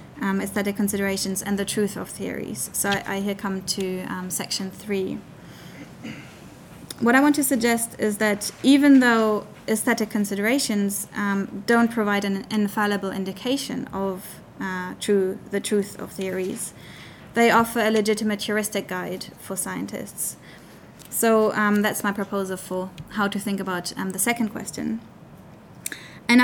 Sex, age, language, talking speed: female, 20-39, English, 145 wpm